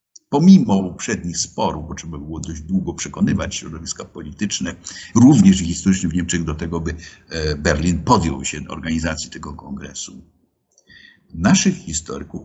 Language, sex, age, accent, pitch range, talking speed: Polish, male, 60-79, native, 75-95 Hz, 130 wpm